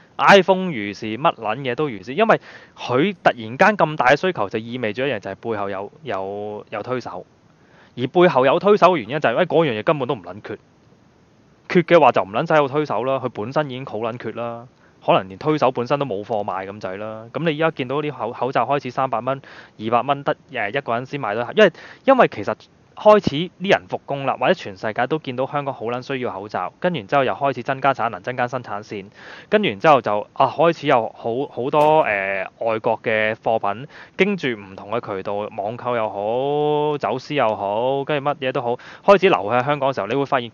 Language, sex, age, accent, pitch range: Chinese, male, 20-39, native, 110-150 Hz